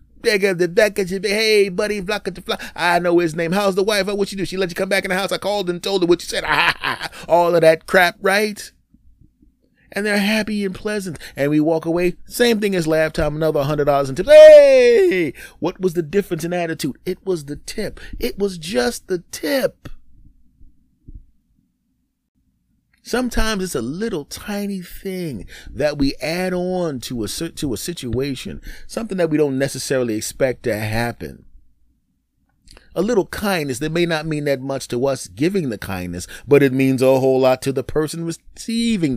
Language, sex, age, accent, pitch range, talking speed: English, male, 30-49, American, 130-195 Hz, 180 wpm